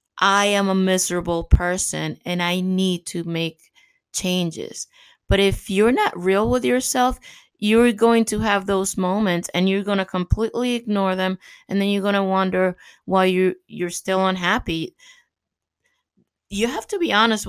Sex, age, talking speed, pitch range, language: female, 20-39, 160 wpm, 175-205 Hz, English